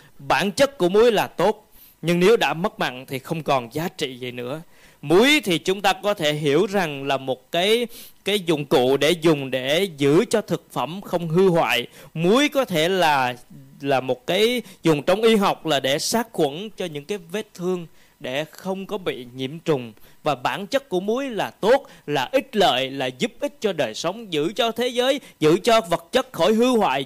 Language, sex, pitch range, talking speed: Vietnamese, male, 155-225 Hz, 210 wpm